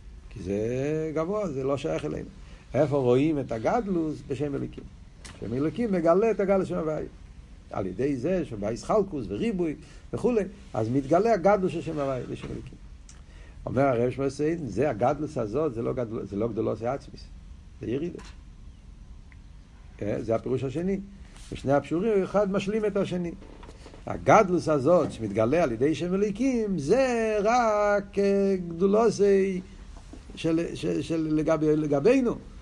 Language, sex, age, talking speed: Hebrew, male, 60-79, 125 wpm